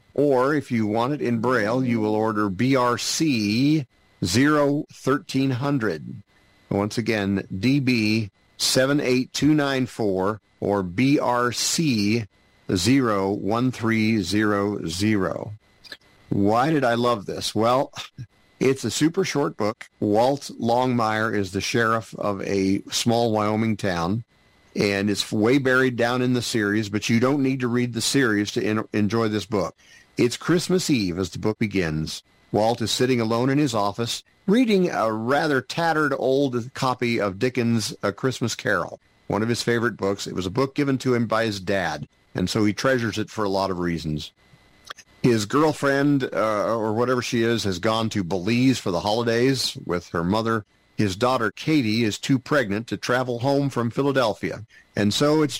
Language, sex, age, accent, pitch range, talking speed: English, male, 50-69, American, 100-130 Hz, 150 wpm